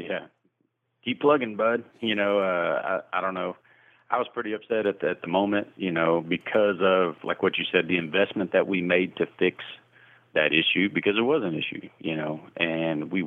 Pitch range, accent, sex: 80-90 Hz, American, male